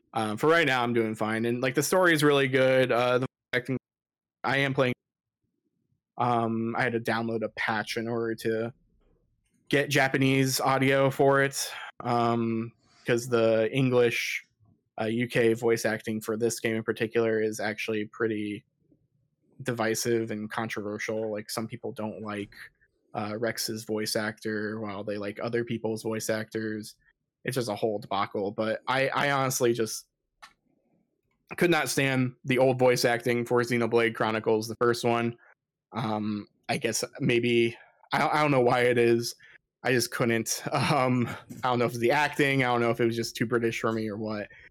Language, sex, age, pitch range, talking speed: English, male, 20-39, 110-125 Hz, 170 wpm